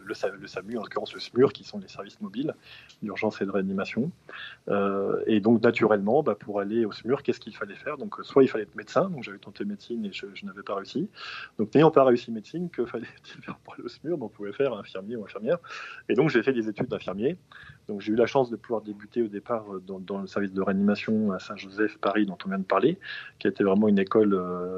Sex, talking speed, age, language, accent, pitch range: male, 235 wpm, 20-39, French, French, 100-125 Hz